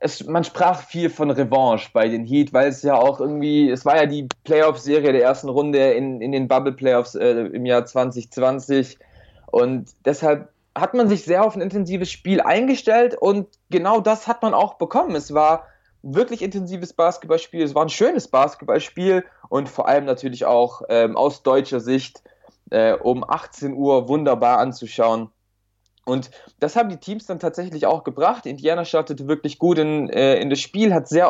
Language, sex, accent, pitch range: German, male, German, 130-175 Hz